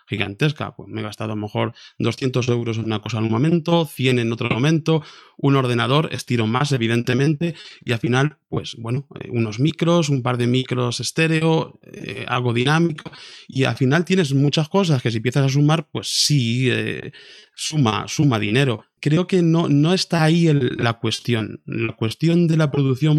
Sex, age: male, 20-39